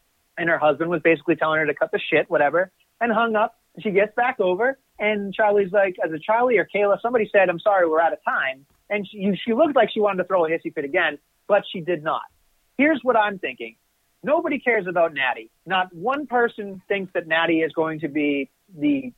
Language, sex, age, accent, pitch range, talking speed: English, male, 30-49, American, 165-215 Hz, 220 wpm